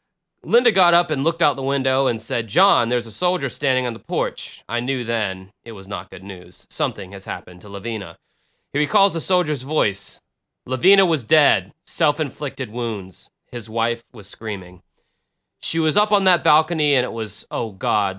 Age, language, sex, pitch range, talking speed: 30-49, English, male, 110-145 Hz, 185 wpm